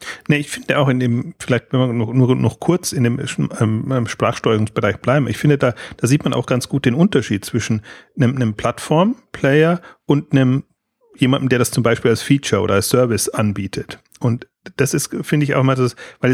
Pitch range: 115-145 Hz